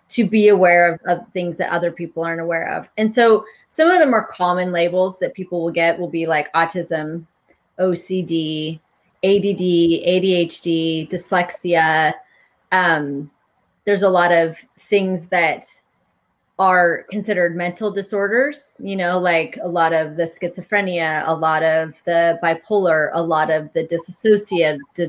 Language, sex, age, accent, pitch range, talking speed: English, female, 30-49, American, 165-205 Hz, 145 wpm